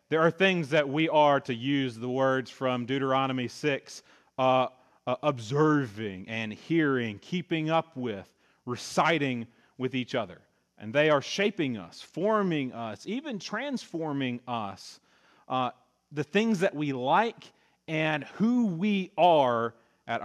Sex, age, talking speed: male, 40-59, 135 wpm